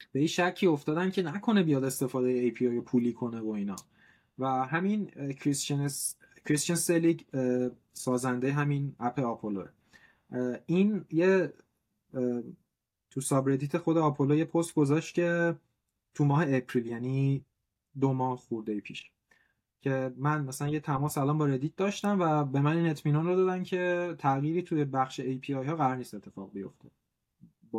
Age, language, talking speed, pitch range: 20-39, Persian, 145 wpm, 125-165 Hz